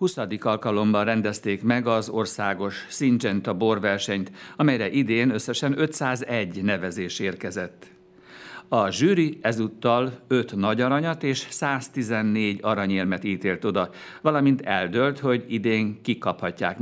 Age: 60-79